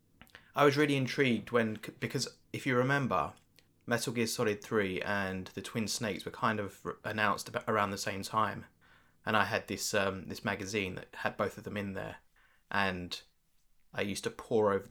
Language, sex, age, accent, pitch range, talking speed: English, male, 20-39, British, 95-120 Hz, 185 wpm